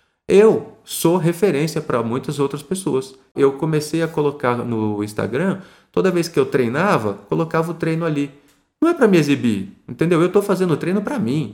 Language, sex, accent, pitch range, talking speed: Portuguese, male, Brazilian, 125-170 Hz, 180 wpm